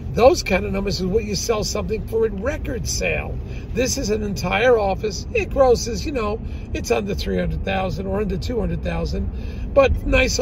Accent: American